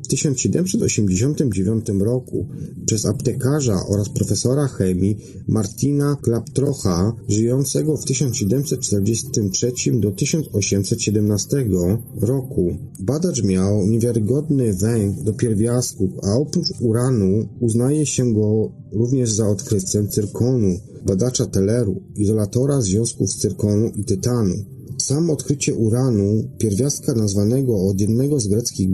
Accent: native